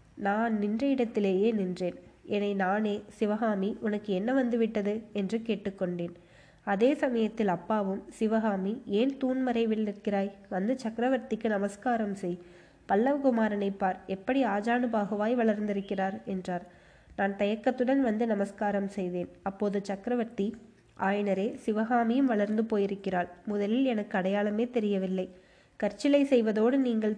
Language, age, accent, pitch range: Tamil, 20-39, native, 195-235 Hz